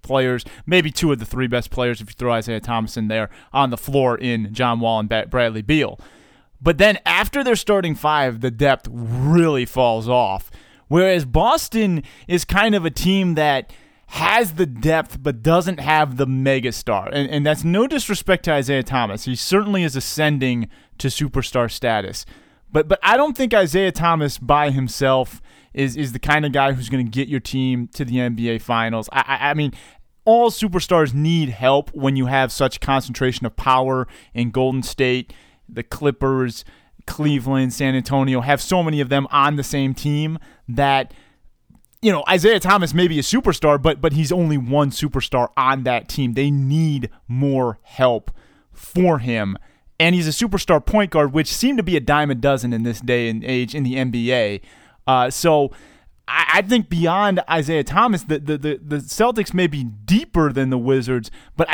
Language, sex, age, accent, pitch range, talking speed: English, male, 30-49, American, 125-165 Hz, 180 wpm